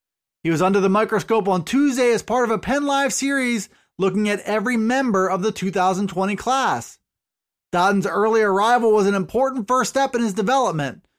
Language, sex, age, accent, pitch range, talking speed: English, male, 20-39, American, 185-235 Hz, 175 wpm